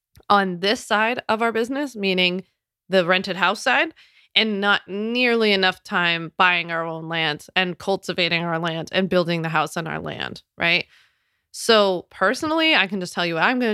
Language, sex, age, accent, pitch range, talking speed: English, female, 20-39, American, 175-205 Hz, 185 wpm